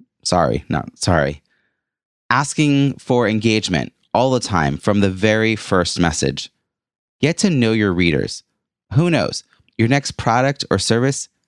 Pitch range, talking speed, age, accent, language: 85-115 Hz, 135 wpm, 30-49, American, English